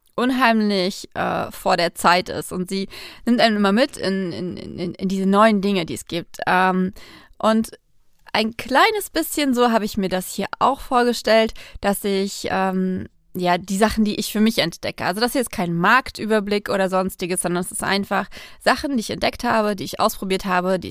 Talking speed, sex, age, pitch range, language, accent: 200 wpm, female, 20-39, 185-225 Hz, German, German